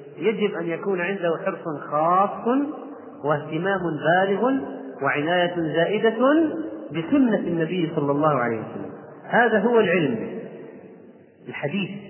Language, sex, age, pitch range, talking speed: Arabic, male, 30-49, 150-200 Hz, 100 wpm